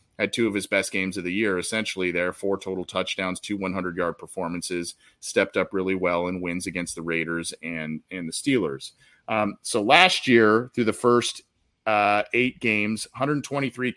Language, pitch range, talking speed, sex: English, 95-125 Hz, 175 wpm, male